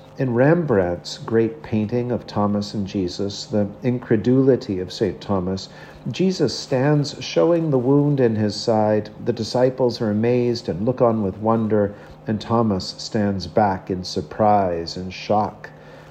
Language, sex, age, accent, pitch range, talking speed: English, male, 50-69, American, 100-135 Hz, 140 wpm